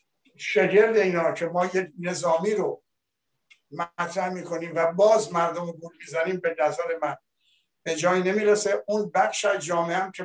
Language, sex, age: Persian, male, 60-79